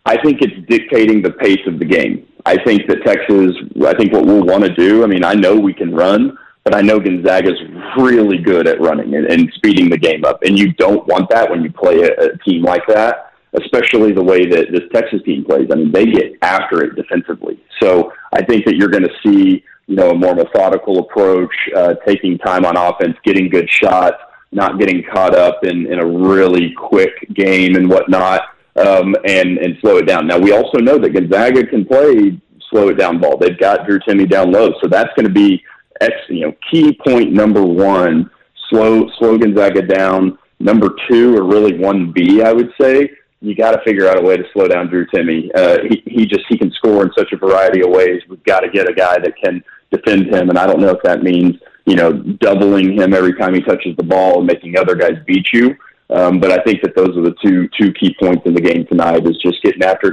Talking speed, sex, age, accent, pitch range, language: 230 wpm, male, 30-49, American, 90-120 Hz, English